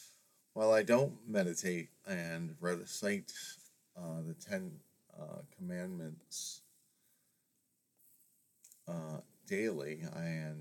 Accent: American